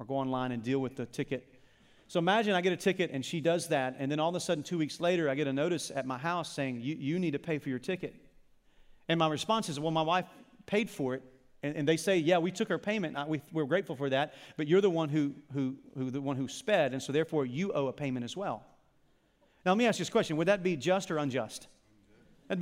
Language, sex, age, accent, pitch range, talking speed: English, male, 40-59, American, 155-245 Hz, 265 wpm